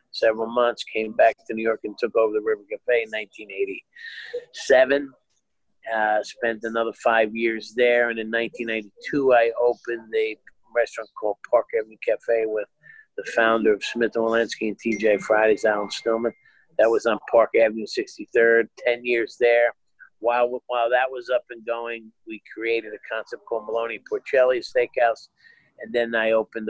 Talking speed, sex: 160 wpm, male